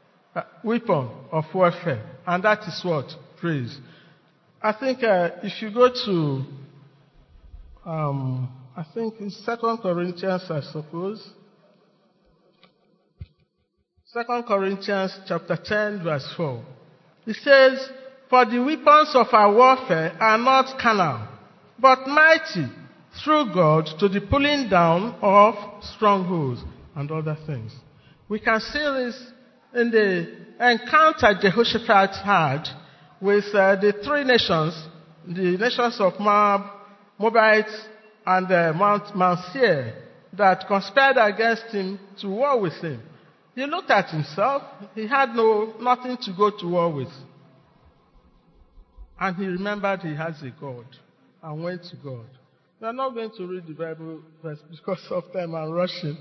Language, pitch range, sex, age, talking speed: English, 165-225 Hz, male, 50-69, 130 wpm